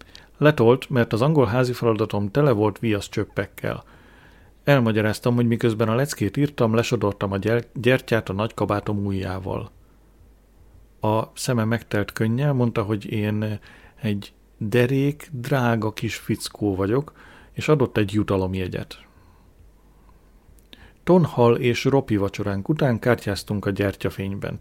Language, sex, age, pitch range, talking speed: Hungarian, male, 40-59, 100-120 Hz, 120 wpm